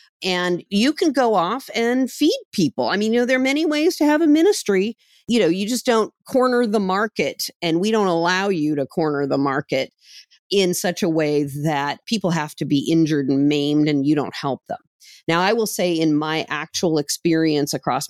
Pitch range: 150-210 Hz